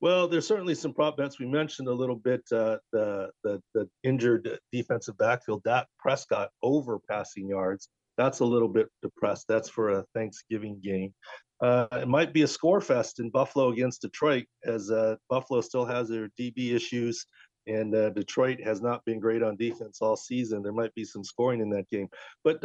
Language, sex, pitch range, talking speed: English, male, 115-140 Hz, 190 wpm